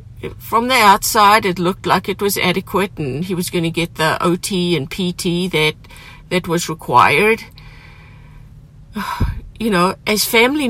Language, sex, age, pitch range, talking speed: English, female, 50-69, 155-215 Hz, 150 wpm